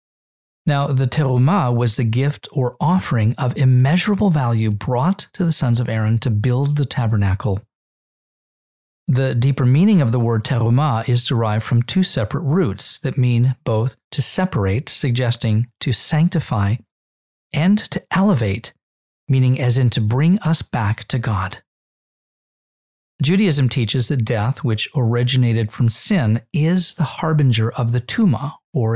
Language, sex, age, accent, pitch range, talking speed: English, male, 40-59, American, 115-150 Hz, 145 wpm